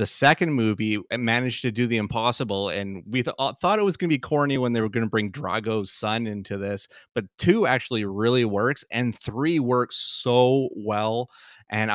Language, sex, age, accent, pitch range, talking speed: English, male, 30-49, American, 100-115 Hz, 195 wpm